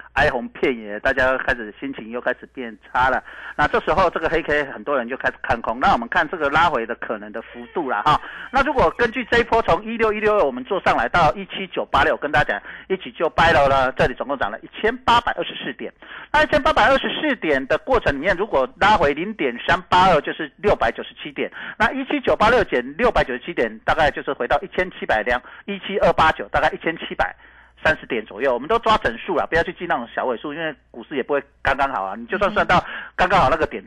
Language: Chinese